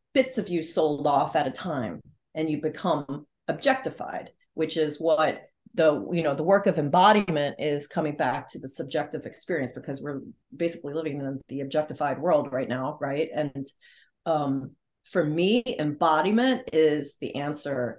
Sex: female